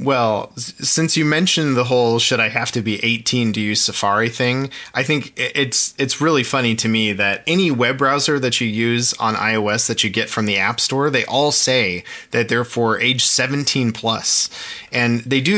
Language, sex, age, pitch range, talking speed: English, male, 30-49, 110-135 Hz, 200 wpm